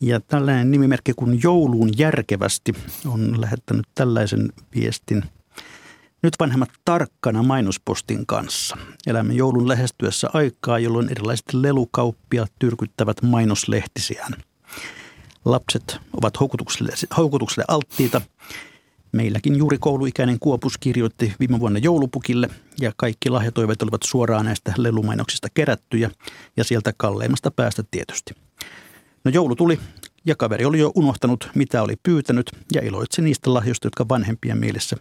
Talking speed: 115 wpm